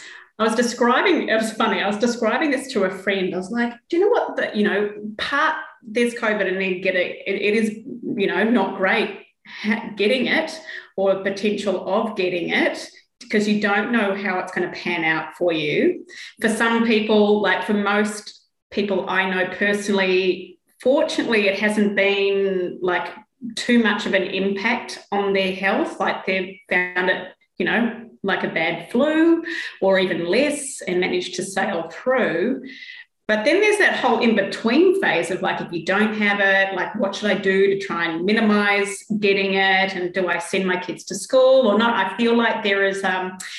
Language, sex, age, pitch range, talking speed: English, female, 20-39, 190-235 Hz, 190 wpm